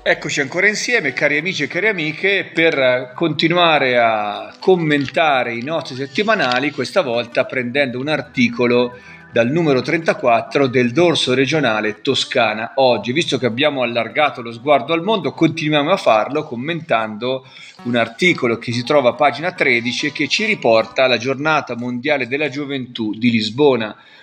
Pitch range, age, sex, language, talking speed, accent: 120-150 Hz, 40-59, male, Italian, 145 wpm, native